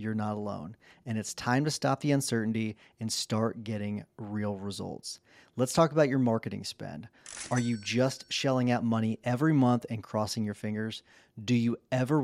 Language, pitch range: English, 110-130 Hz